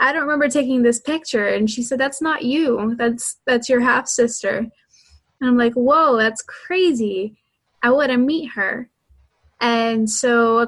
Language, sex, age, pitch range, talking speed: English, female, 10-29, 215-250 Hz, 175 wpm